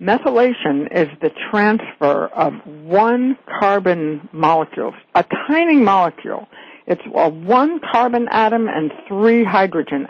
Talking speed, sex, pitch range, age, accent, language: 115 wpm, female, 165-225 Hz, 60-79, American, English